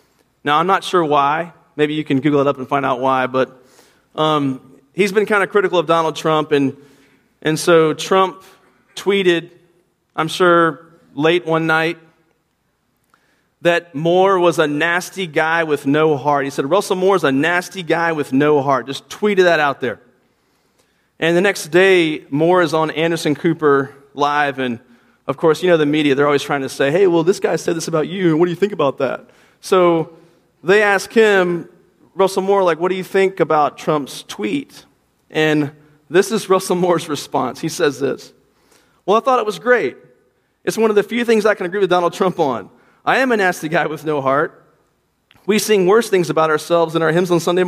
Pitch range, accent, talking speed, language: 150-190 Hz, American, 200 wpm, English